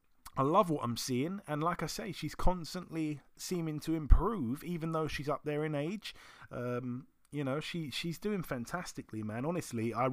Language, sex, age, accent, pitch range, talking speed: English, male, 30-49, British, 130-175 Hz, 185 wpm